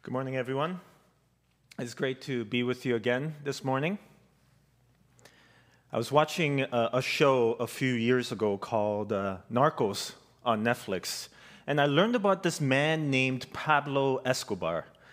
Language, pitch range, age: English, 125-165 Hz, 30-49